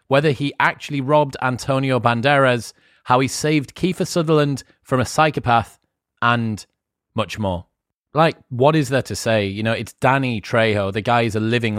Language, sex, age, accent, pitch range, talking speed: English, male, 30-49, British, 105-130 Hz, 170 wpm